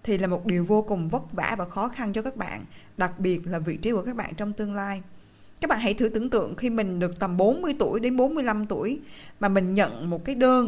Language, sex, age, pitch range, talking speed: Vietnamese, female, 20-39, 195-265 Hz, 260 wpm